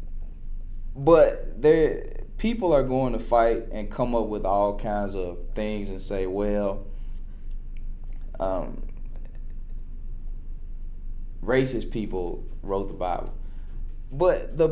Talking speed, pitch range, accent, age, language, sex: 105 wpm, 100-160 Hz, American, 20-39, English, male